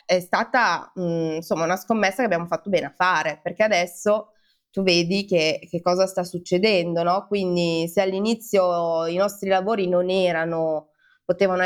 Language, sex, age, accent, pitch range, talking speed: Italian, female, 20-39, native, 170-195 Hz, 160 wpm